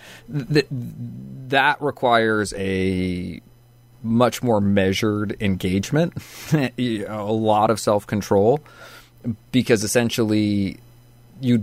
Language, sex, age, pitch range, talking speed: English, male, 30-49, 100-120 Hz, 70 wpm